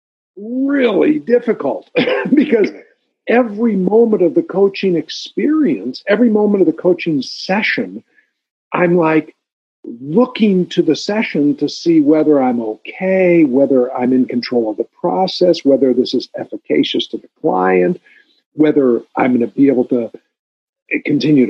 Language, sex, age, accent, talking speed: English, male, 50-69, American, 135 wpm